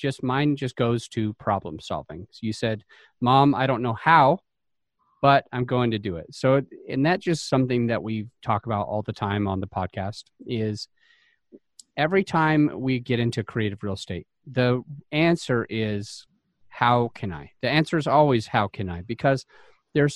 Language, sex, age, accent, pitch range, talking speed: English, male, 30-49, American, 120-145 Hz, 180 wpm